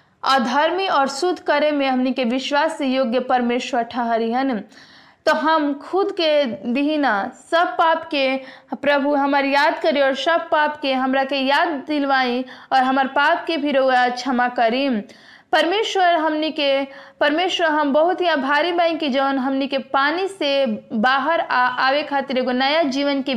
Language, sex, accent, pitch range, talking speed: Hindi, female, native, 265-315 Hz, 155 wpm